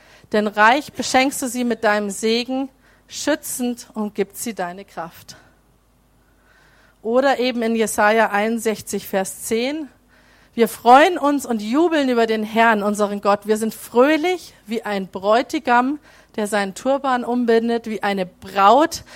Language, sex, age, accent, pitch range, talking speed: German, female, 40-59, German, 215-265 Hz, 140 wpm